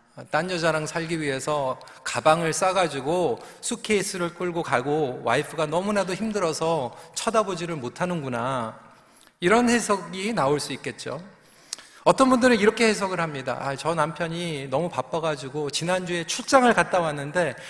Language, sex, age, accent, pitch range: Korean, male, 40-59, native, 150-220 Hz